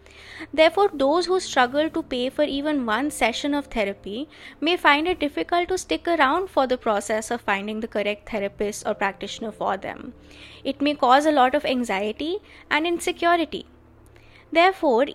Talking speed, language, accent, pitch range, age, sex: 160 wpm, Hindi, native, 230-310 Hz, 20-39, female